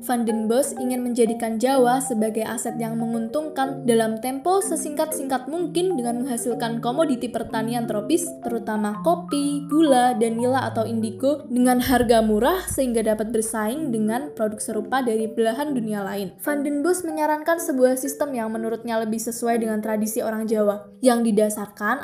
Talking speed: 150 wpm